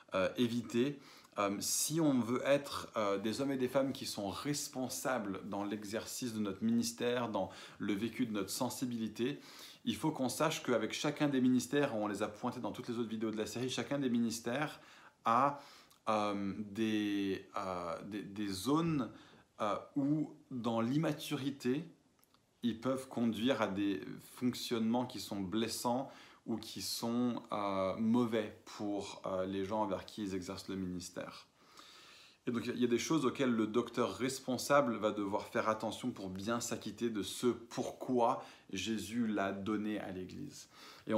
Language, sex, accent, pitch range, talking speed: French, male, French, 105-125 Hz, 165 wpm